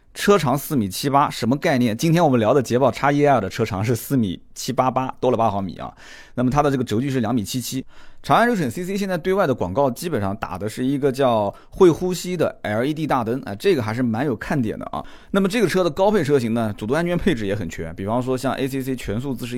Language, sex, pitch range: Chinese, male, 110-140 Hz